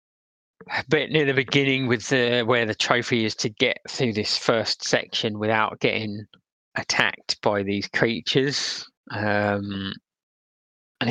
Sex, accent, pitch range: male, British, 105-120 Hz